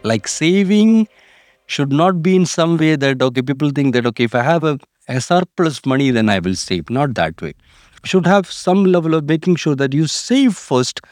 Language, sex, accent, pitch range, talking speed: English, male, Indian, 110-160 Hz, 205 wpm